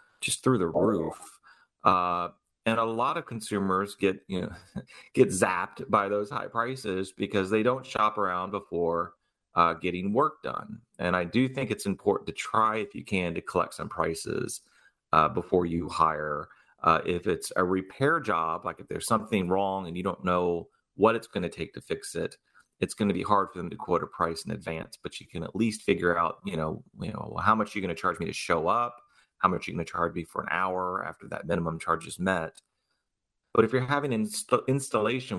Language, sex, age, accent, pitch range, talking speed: English, male, 30-49, American, 85-110 Hz, 215 wpm